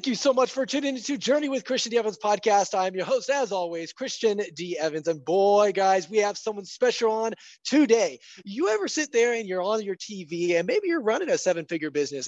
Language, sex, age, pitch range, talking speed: English, male, 20-39, 175-225 Hz, 225 wpm